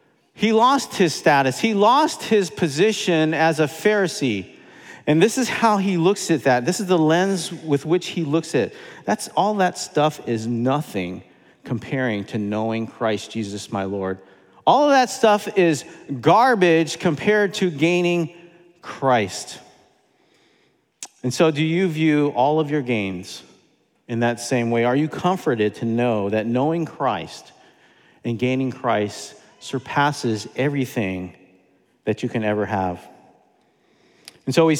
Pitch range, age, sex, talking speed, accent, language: 125-175 Hz, 40-59, male, 150 wpm, American, English